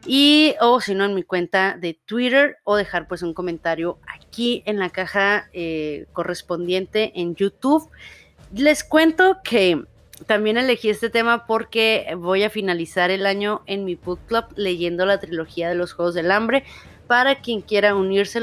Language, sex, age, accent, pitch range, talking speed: Spanish, female, 30-49, Mexican, 180-250 Hz, 170 wpm